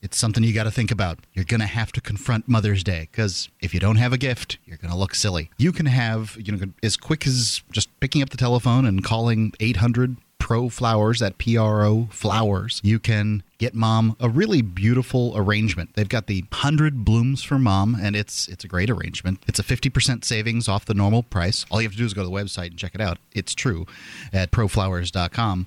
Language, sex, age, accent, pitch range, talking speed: English, male, 30-49, American, 100-125 Hz, 215 wpm